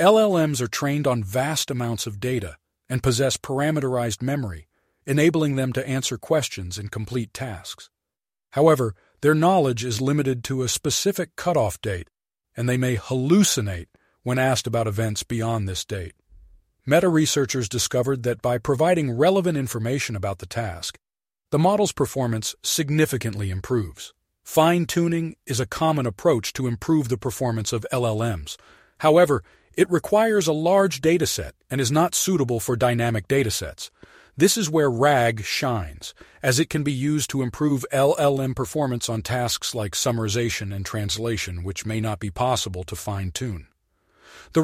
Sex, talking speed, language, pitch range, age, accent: male, 150 wpm, English, 110-145 Hz, 40-59, American